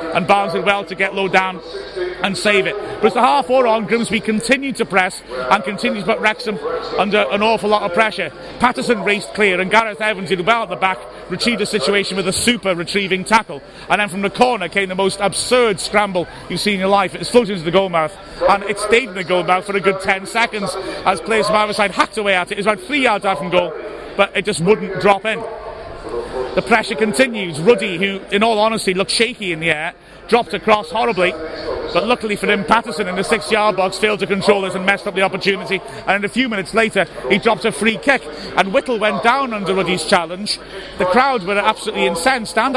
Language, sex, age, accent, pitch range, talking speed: English, male, 30-49, British, 190-225 Hz, 235 wpm